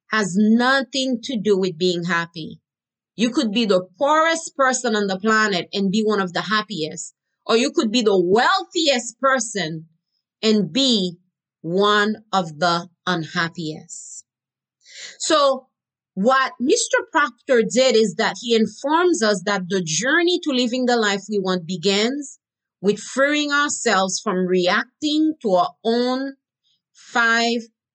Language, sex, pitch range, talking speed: English, female, 185-255 Hz, 135 wpm